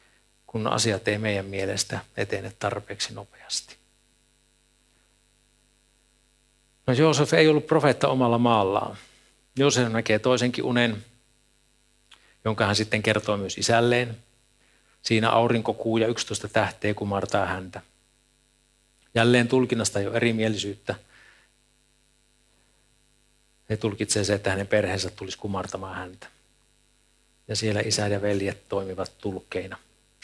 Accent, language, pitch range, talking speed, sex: native, Finnish, 100-120 Hz, 105 wpm, male